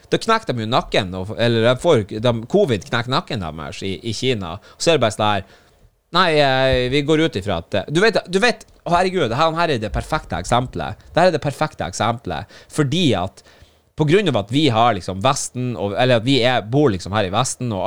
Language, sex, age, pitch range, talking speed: English, male, 30-49, 95-145 Hz, 210 wpm